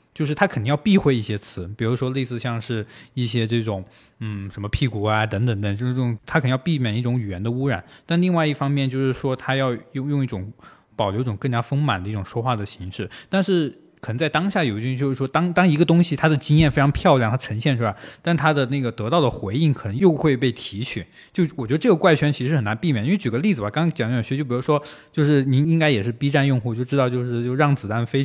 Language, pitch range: Chinese, 115-150 Hz